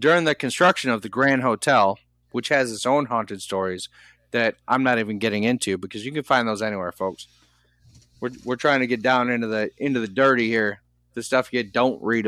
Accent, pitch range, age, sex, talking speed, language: American, 85-125 Hz, 30-49, male, 210 wpm, English